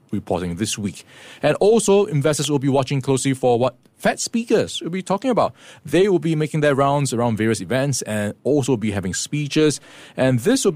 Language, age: English, 20-39